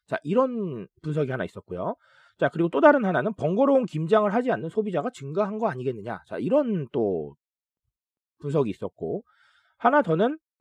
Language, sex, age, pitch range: Korean, male, 30-49, 145-230 Hz